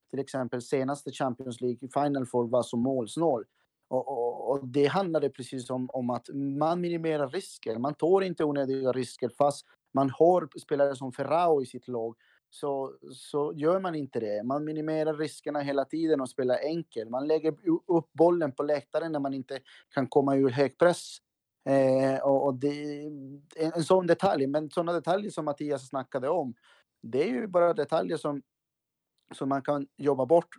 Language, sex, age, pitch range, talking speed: Swedish, male, 30-49, 130-155 Hz, 180 wpm